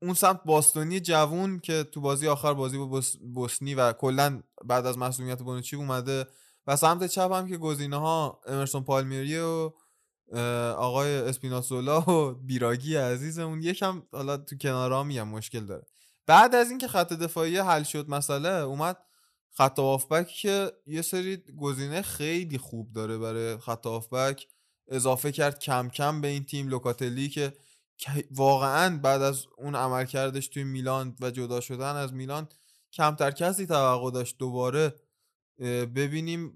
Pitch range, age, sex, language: 130-160 Hz, 20-39, male, Persian